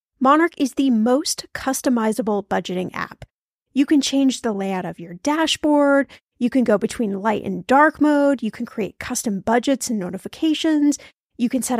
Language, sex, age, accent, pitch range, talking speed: English, female, 10-29, American, 220-285 Hz, 170 wpm